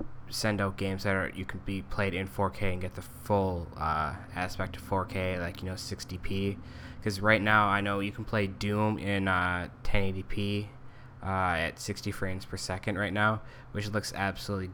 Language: English